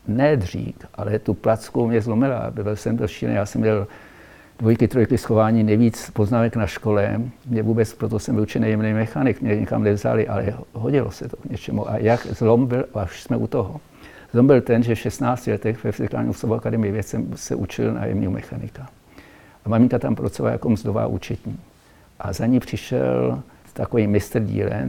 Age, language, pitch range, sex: 60-79, Czech, 105-120 Hz, male